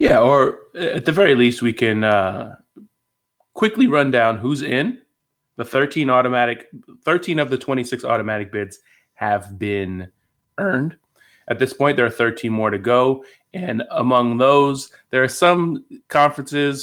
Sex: male